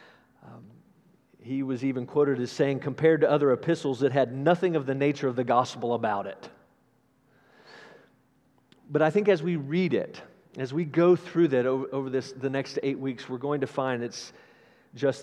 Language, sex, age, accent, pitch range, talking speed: English, male, 40-59, American, 140-195 Hz, 175 wpm